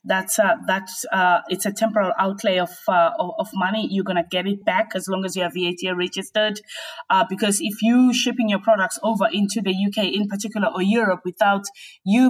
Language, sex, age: English, female, 20-39